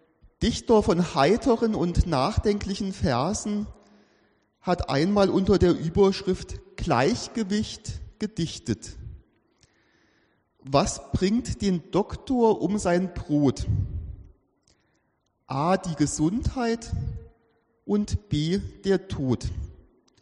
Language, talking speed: German, 80 wpm